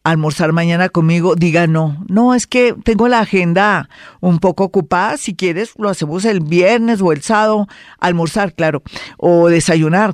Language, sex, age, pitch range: Spanish, female, 50-69, 170-220 Hz